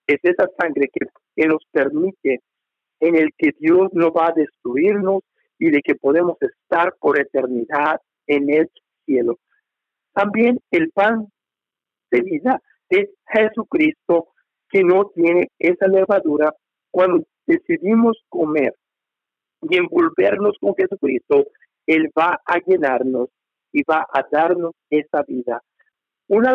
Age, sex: 50-69, male